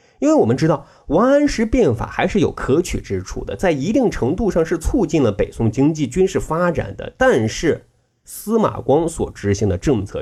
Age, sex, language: 30-49, male, Chinese